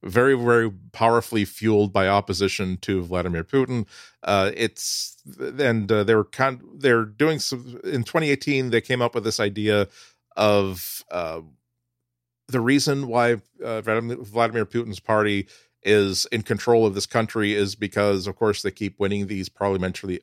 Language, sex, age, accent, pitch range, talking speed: English, male, 40-59, American, 100-120 Hz, 150 wpm